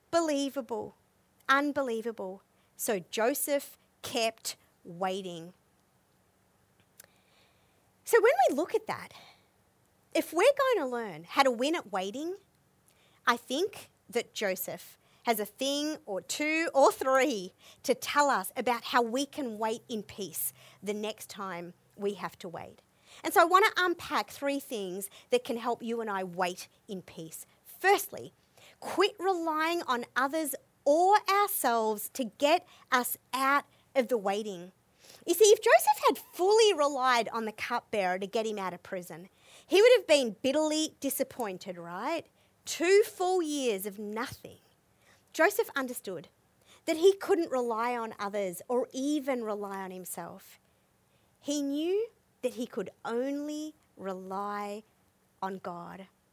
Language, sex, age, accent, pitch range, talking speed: English, female, 40-59, Australian, 205-310 Hz, 140 wpm